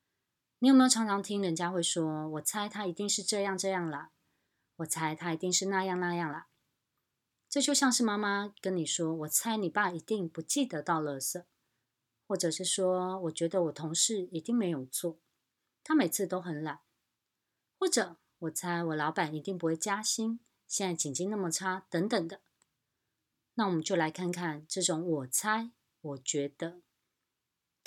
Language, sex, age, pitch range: Chinese, female, 20-39, 160-200 Hz